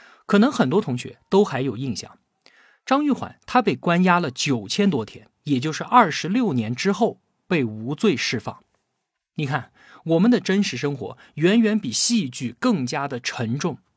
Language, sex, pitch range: Chinese, male, 130-220 Hz